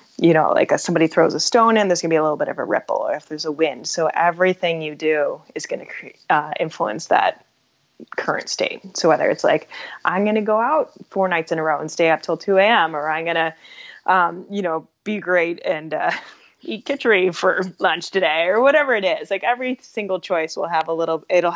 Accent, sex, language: American, female, English